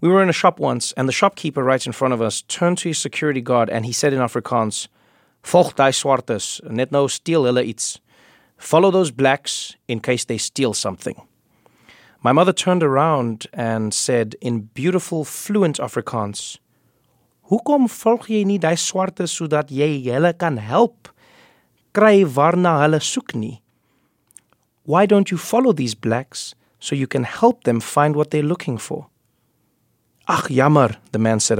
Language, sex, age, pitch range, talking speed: English, male, 30-49, 115-165 Hz, 130 wpm